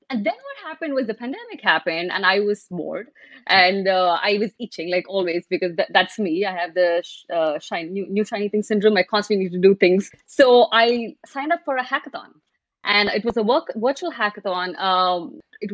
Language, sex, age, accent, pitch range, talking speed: English, female, 30-49, Indian, 185-230 Hz, 215 wpm